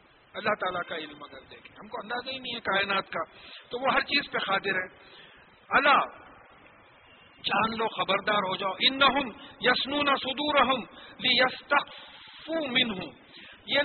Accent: Indian